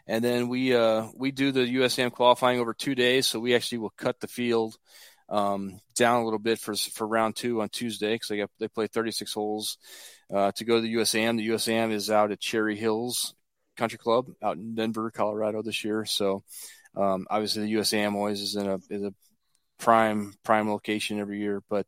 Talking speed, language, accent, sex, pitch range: 210 wpm, English, American, male, 105-120 Hz